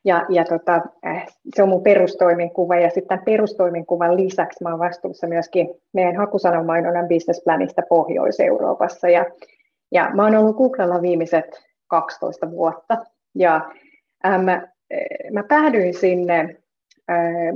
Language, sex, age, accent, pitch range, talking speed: Finnish, female, 30-49, native, 170-215 Hz, 105 wpm